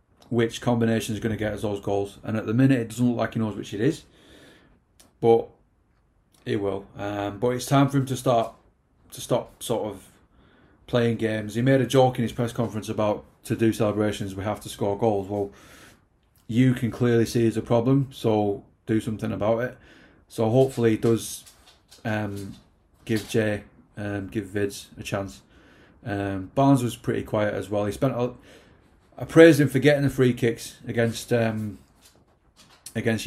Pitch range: 105-120 Hz